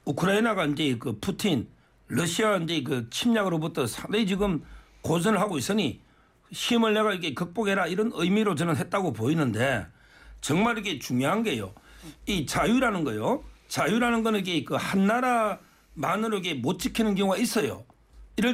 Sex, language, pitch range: male, Korean, 195-250 Hz